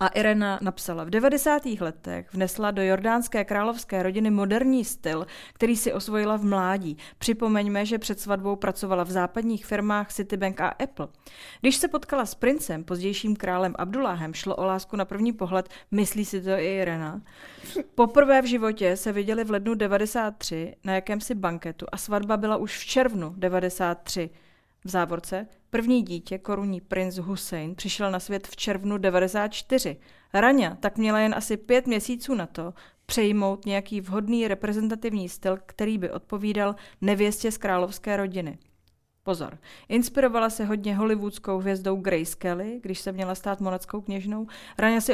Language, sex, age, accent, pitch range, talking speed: Czech, female, 30-49, native, 185-215 Hz, 155 wpm